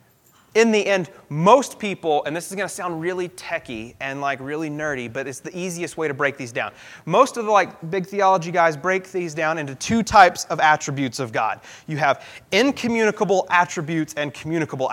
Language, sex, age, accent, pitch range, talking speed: English, male, 30-49, American, 155-200 Hz, 195 wpm